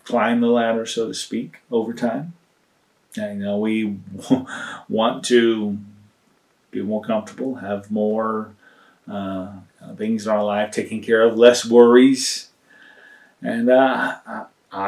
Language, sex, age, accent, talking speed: English, male, 30-49, American, 125 wpm